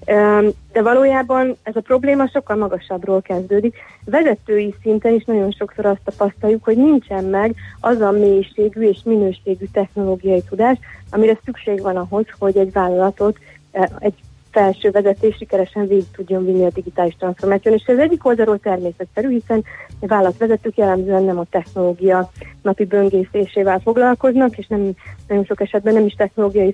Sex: female